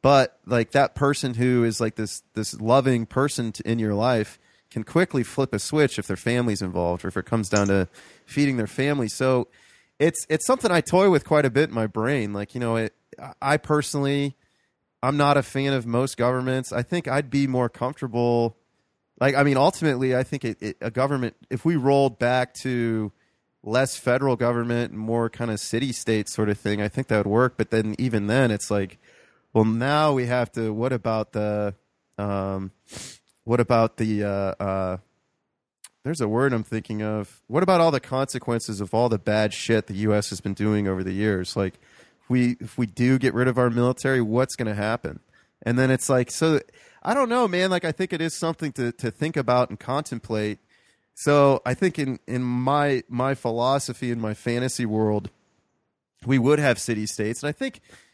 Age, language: 30-49, English